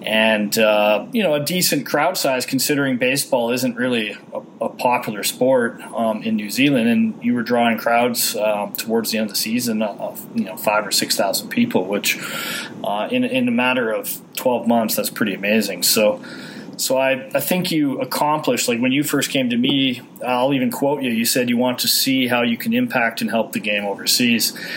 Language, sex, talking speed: English, male, 205 wpm